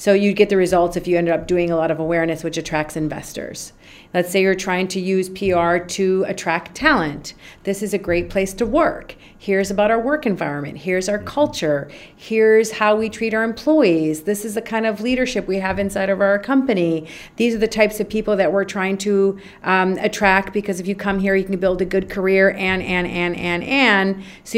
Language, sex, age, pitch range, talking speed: English, female, 40-59, 180-220 Hz, 215 wpm